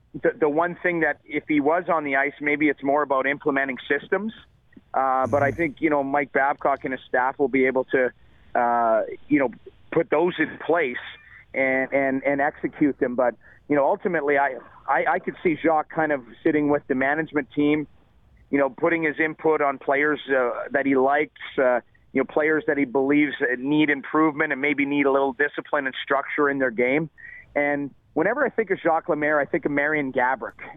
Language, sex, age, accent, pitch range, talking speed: English, male, 40-59, American, 130-155 Hz, 205 wpm